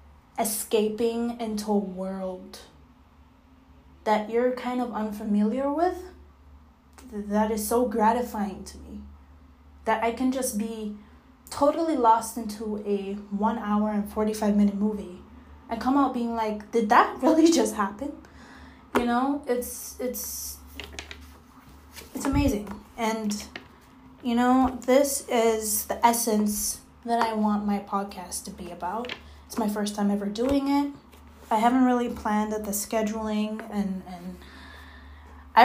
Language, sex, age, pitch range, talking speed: English, female, 10-29, 195-240 Hz, 135 wpm